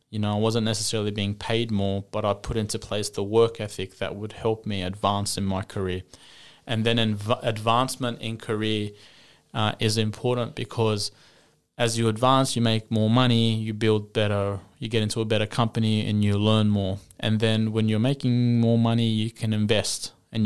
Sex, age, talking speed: male, 20-39, 190 wpm